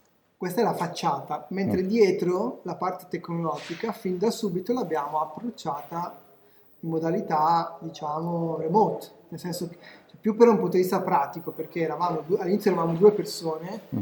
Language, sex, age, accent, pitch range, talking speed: Italian, male, 20-39, native, 155-185 Hz, 150 wpm